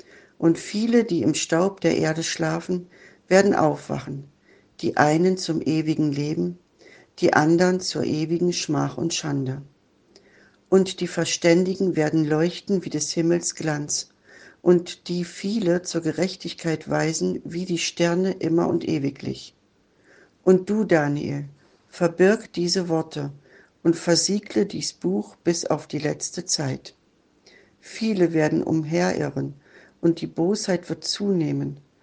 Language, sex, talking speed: German, female, 125 wpm